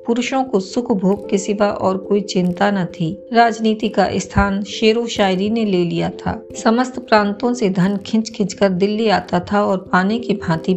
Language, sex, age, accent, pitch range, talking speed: Hindi, female, 50-69, native, 190-230 Hz, 185 wpm